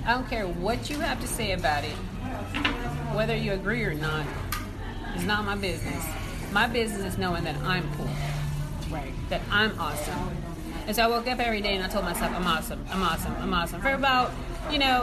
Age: 30-49